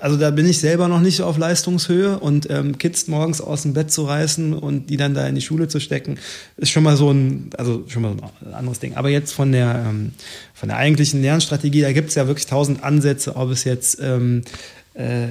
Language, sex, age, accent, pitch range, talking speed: German, male, 30-49, German, 130-155 Hz, 235 wpm